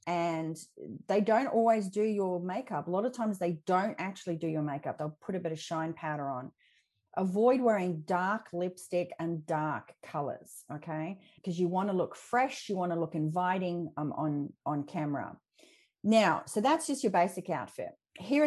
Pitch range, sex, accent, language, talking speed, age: 170-230 Hz, female, Australian, English, 180 wpm, 30-49